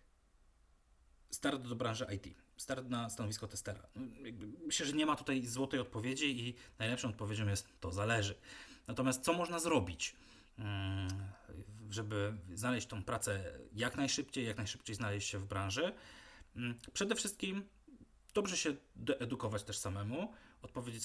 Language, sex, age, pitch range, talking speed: Polish, male, 30-49, 100-130 Hz, 130 wpm